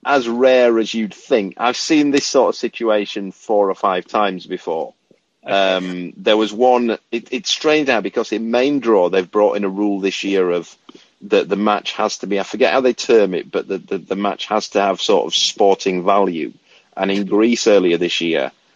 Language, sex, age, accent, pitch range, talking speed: English, male, 40-59, British, 95-115 Hz, 210 wpm